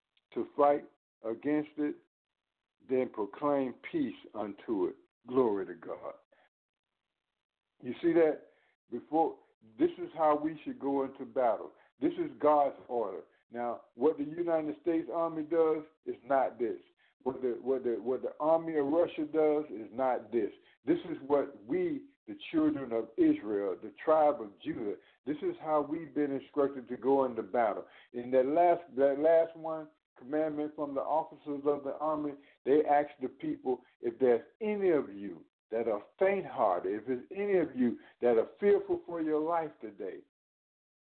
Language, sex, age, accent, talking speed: English, male, 60-79, American, 160 wpm